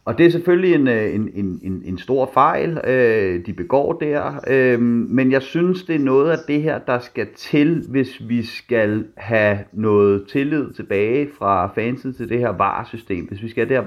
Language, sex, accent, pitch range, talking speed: Danish, male, native, 100-130 Hz, 200 wpm